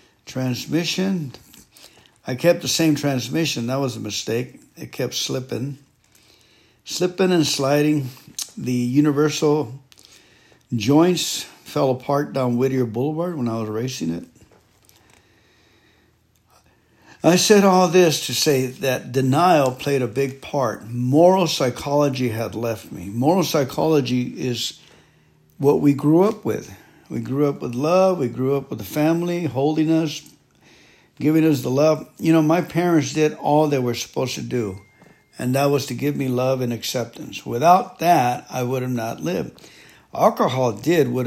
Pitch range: 125-155 Hz